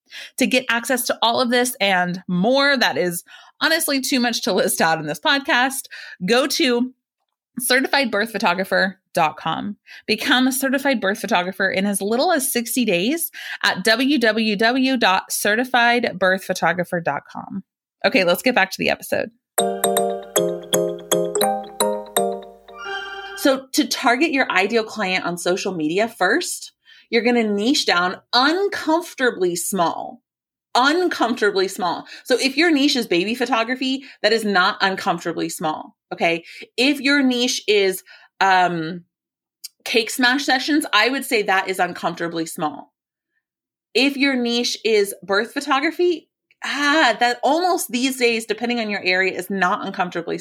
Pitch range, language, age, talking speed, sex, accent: 185-265 Hz, English, 30-49, 130 wpm, female, American